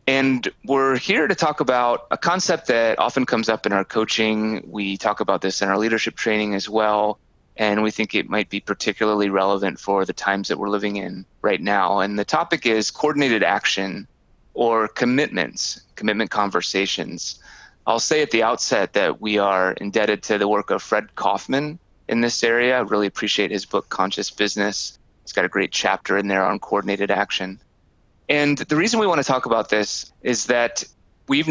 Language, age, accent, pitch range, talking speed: English, 30-49, American, 100-115 Hz, 190 wpm